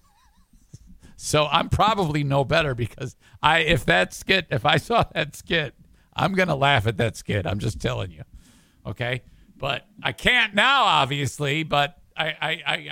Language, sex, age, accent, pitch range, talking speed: English, male, 50-69, American, 140-195 Hz, 155 wpm